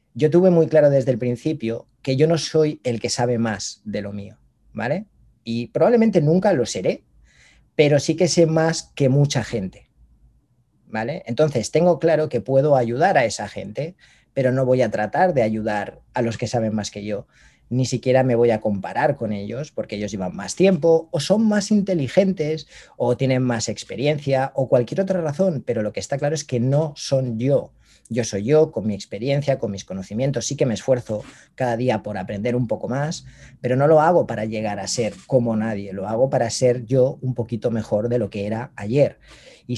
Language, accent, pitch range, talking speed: Spanish, Spanish, 110-150 Hz, 205 wpm